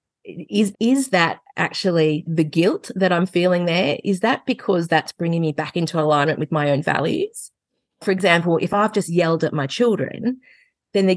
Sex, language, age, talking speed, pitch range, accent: female, English, 30-49, 185 wpm, 155-195 Hz, Australian